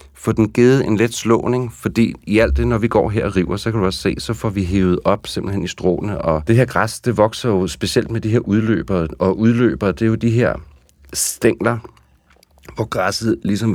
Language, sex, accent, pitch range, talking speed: Danish, male, native, 90-115 Hz, 225 wpm